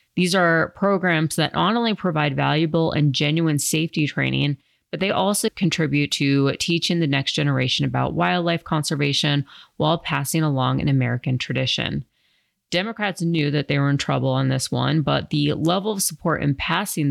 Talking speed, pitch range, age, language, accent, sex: 165 wpm, 140-170 Hz, 30-49, English, American, female